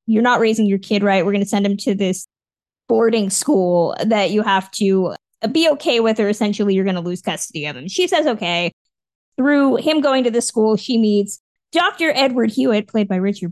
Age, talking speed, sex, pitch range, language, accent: 20-39, 215 wpm, female, 200-265 Hz, English, American